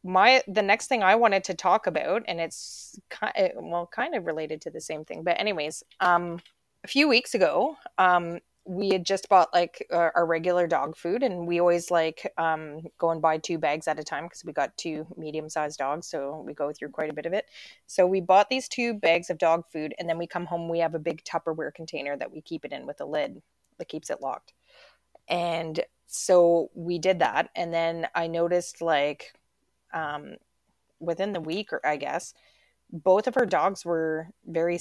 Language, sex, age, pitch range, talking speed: English, female, 20-39, 160-185 Hz, 210 wpm